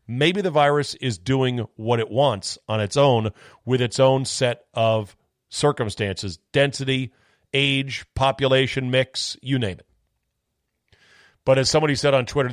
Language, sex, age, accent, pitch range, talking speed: English, male, 40-59, American, 110-140 Hz, 145 wpm